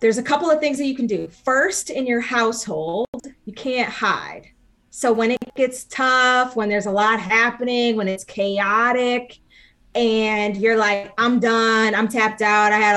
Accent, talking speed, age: American, 180 wpm, 20-39